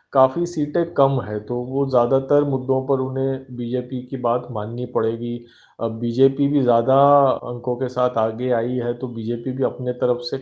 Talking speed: 180 wpm